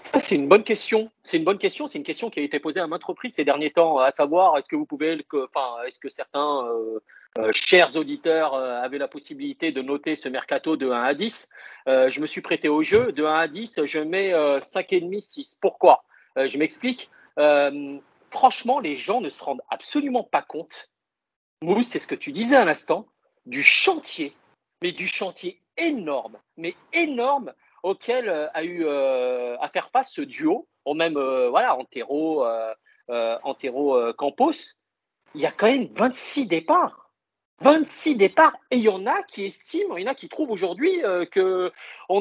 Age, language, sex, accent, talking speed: 40-59, French, male, French, 195 wpm